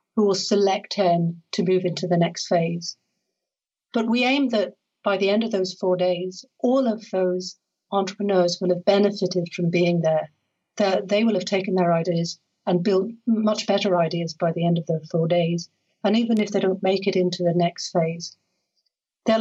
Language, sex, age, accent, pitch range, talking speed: English, female, 50-69, British, 170-200 Hz, 190 wpm